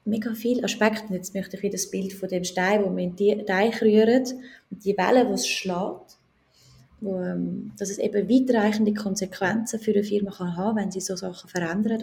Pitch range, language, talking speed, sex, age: 185-220 Hz, German, 190 wpm, female, 20-39